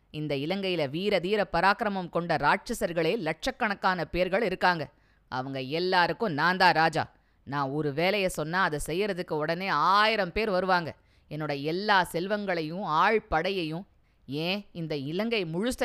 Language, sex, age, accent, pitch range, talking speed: Tamil, female, 20-39, native, 155-200 Hz, 125 wpm